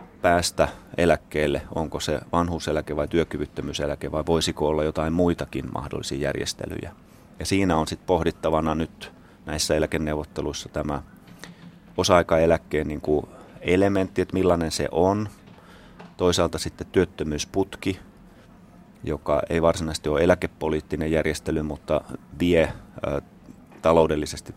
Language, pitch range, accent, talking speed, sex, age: Finnish, 75-90 Hz, native, 105 wpm, male, 30-49